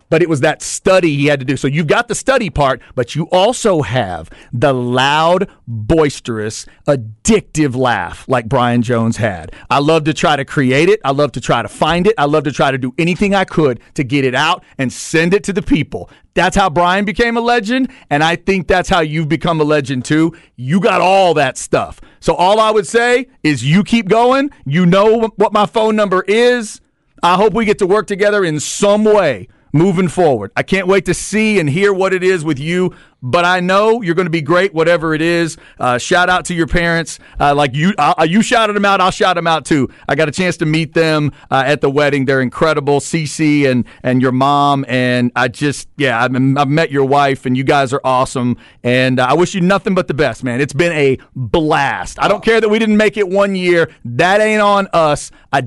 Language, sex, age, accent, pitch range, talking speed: English, male, 40-59, American, 140-195 Hz, 230 wpm